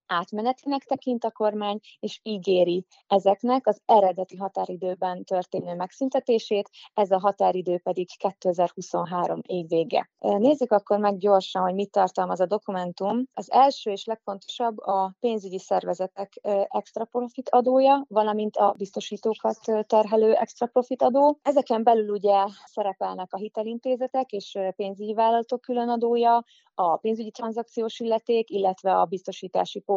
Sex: female